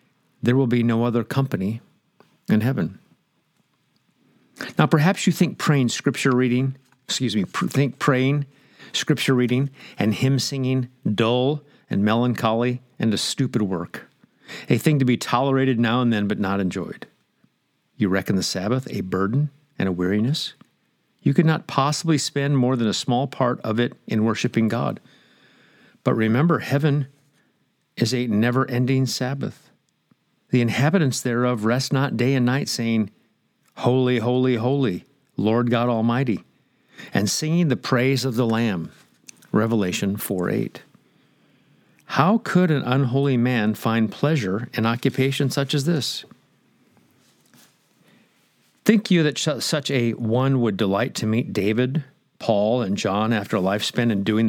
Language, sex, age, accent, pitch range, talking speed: English, male, 50-69, American, 115-140 Hz, 145 wpm